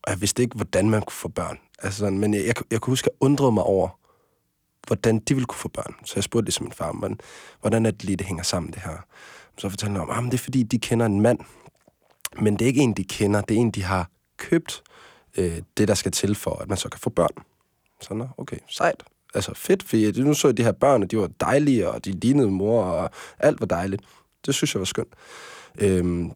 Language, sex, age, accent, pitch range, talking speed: Danish, male, 20-39, native, 95-120 Hz, 250 wpm